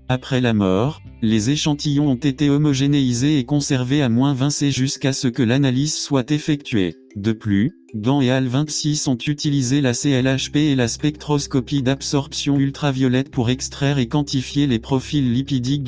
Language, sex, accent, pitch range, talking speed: English, male, French, 125-145 Hz, 145 wpm